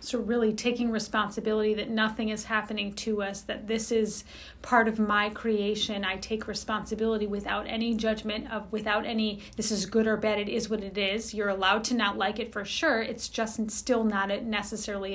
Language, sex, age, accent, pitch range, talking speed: English, female, 30-49, American, 215-255 Hz, 195 wpm